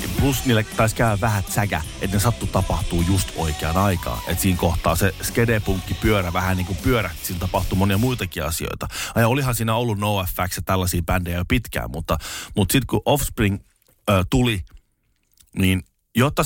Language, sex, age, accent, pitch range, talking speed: Finnish, male, 30-49, native, 90-120 Hz, 170 wpm